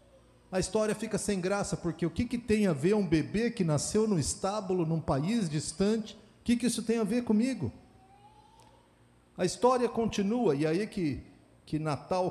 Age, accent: 50-69, Brazilian